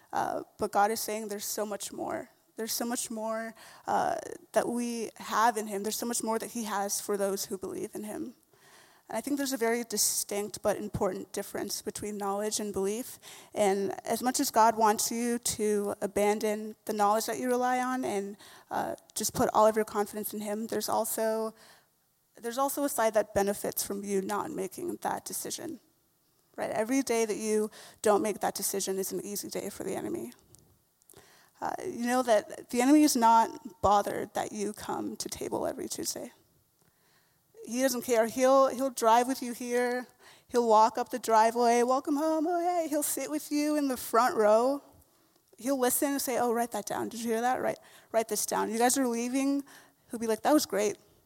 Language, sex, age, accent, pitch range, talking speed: English, female, 20-39, American, 210-260 Hz, 195 wpm